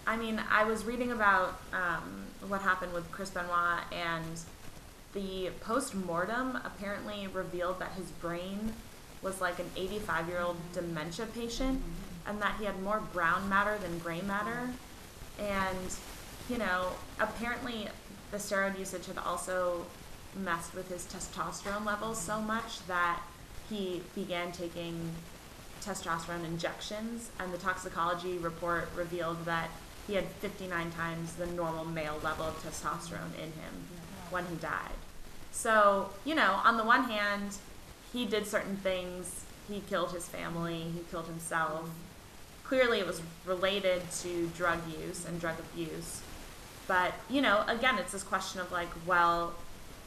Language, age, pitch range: English, 20-39, 170-205 Hz